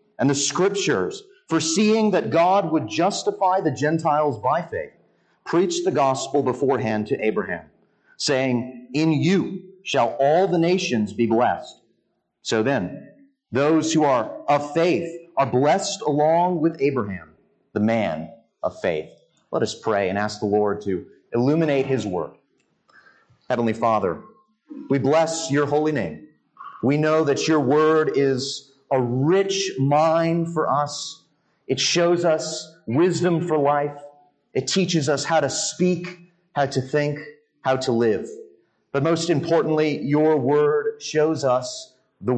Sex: male